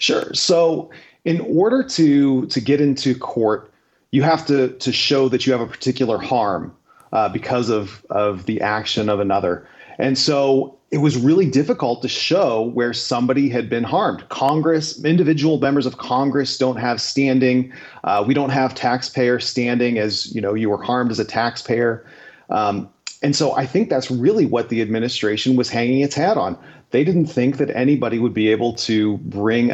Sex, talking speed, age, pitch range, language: male, 180 wpm, 30-49, 115-140 Hz, English